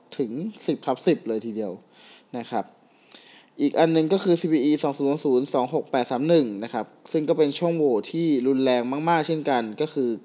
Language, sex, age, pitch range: Thai, male, 20-39, 130-165 Hz